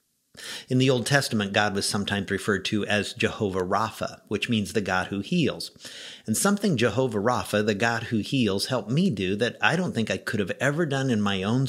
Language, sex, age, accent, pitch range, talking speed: English, male, 50-69, American, 100-135 Hz, 210 wpm